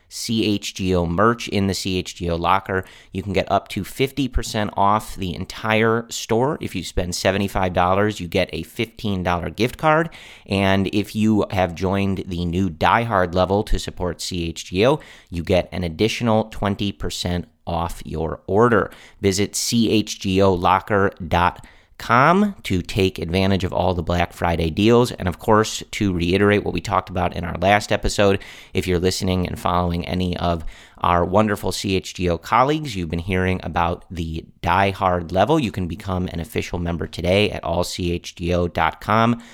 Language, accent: English, American